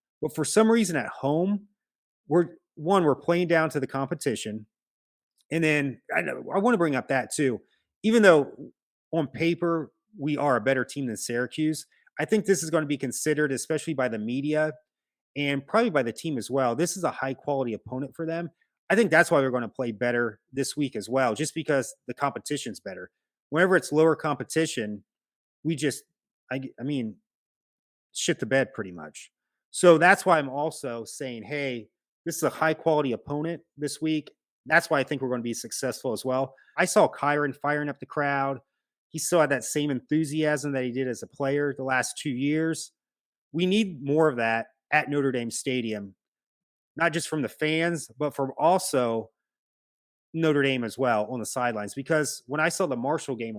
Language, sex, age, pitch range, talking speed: English, male, 30-49, 130-160 Hz, 195 wpm